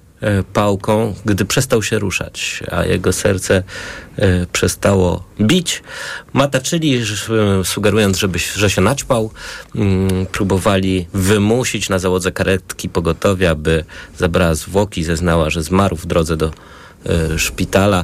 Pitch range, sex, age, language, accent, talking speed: 90-110 Hz, male, 30-49, Polish, native, 120 wpm